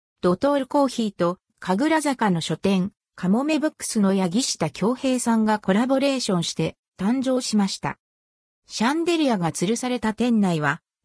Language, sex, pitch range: Japanese, female, 180-260 Hz